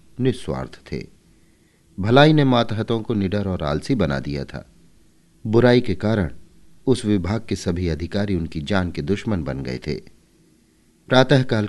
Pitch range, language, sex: 85-115 Hz, Hindi, male